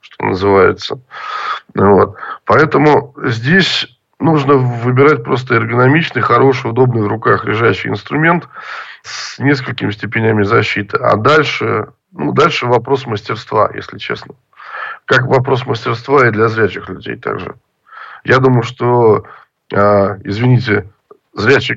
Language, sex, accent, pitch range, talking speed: Russian, male, native, 110-140 Hz, 110 wpm